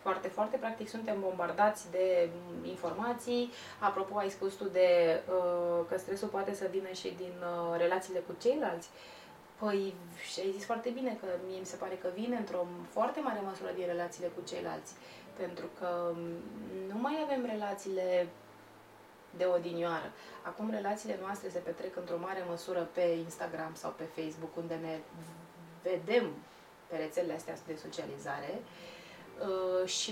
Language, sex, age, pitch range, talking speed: Romanian, female, 20-39, 175-215 Hz, 145 wpm